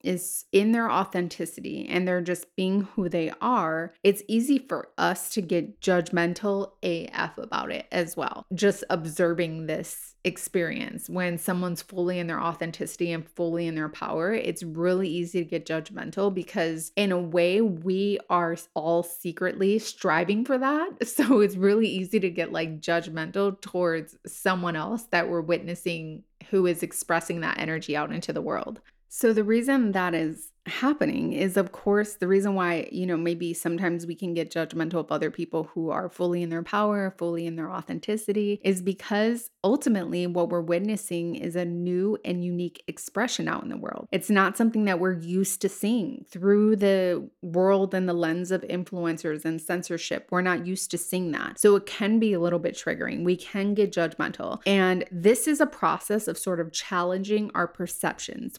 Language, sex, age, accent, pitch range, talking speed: English, female, 20-39, American, 170-200 Hz, 180 wpm